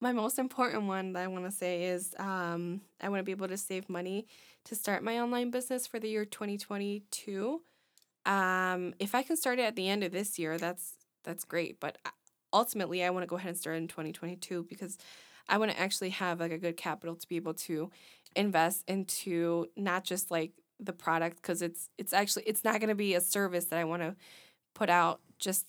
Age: 20-39